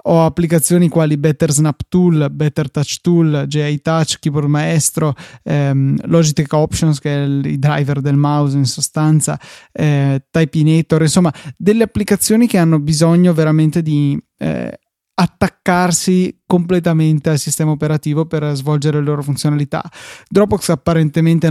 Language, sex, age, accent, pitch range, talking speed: Italian, male, 20-39, native, 150-170 Hz, 135 wpm